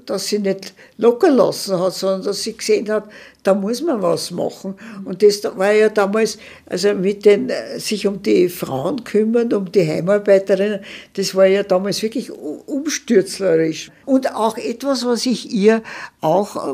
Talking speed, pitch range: 160 wpm, 175-215 Hz